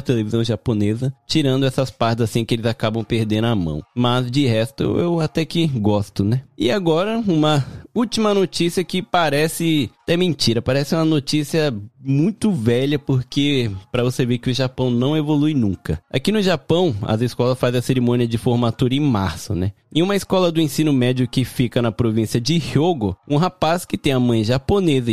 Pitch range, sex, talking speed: 115-160 Hz, male, 180 wpm